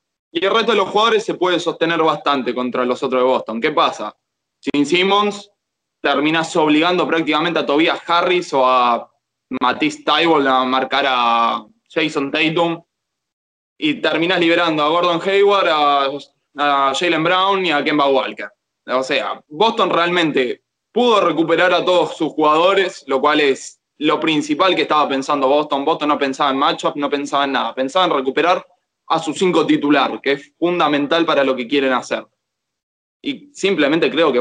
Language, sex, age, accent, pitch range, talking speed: Spanish, male, 20-39, Argentinian, 135-175 Hz, 165 wpm